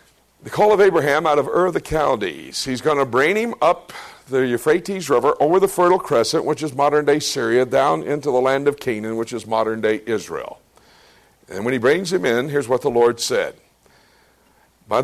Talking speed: 195 wpm